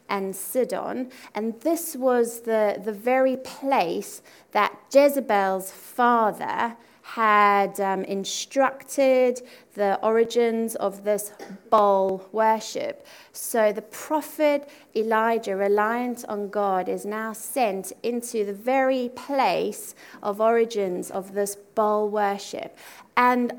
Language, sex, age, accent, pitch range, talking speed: English, female, 30-49, British, 200-255 Hz, 105 wpm